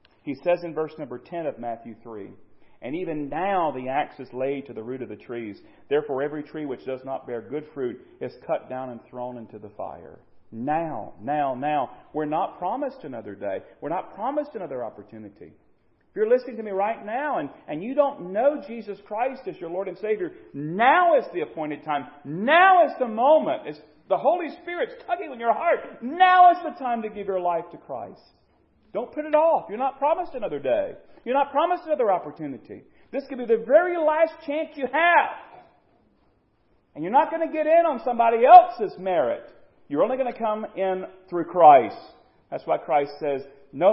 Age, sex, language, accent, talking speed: 40-59, male, English, American, 200 wpm